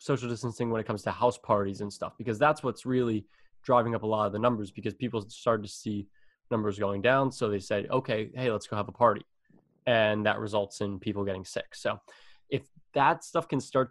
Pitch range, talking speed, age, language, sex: 105-130 Hz, 225 wpm, 20-39, English, male